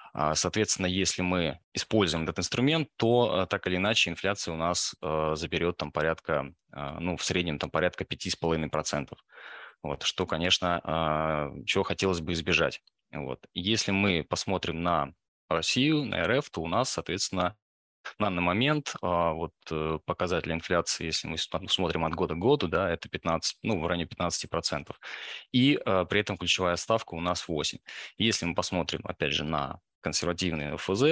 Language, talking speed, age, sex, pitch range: Russian, 160 wpm, 20-39, male, 80-100 Hz